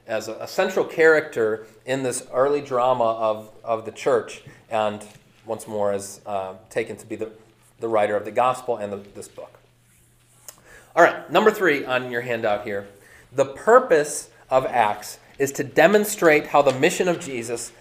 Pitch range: 115-155 Hz